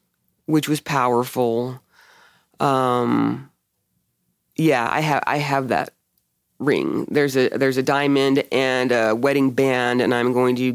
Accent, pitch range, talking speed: American, 120-165 Hz, 135 wpm